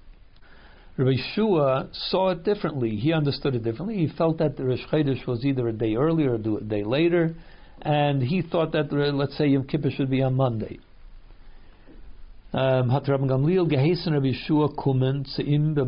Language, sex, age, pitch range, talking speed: English, male, 60-79, 120-155 Hz, 145 wpm